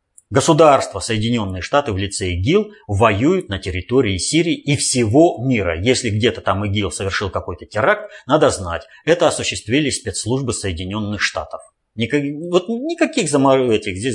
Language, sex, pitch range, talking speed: Russian, male, 95-135 Hz, 135 wpm